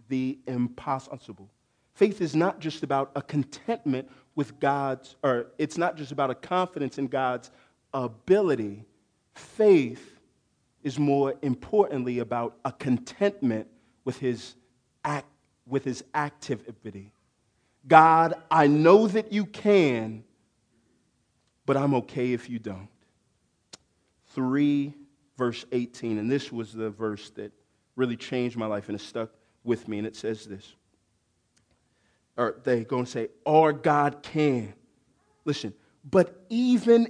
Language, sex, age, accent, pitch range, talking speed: English, male, 40-59, American, 120-185 Hz, 125 wpm